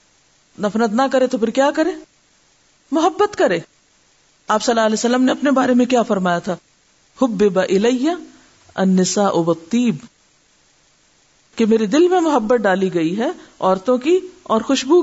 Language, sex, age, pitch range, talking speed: Urdu, female, 50-69, 205-300 Hz, 150 wpm